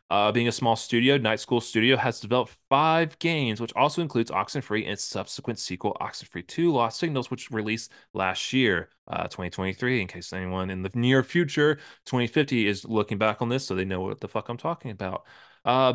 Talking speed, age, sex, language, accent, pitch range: 205 wpm, 20-39, male, English, American, 105-145 Hz